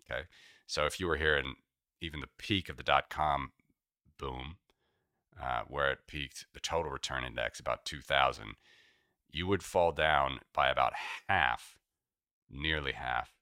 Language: English